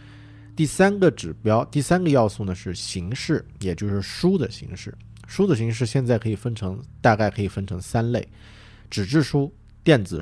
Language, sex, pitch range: Chinese, male, 90-115 Hz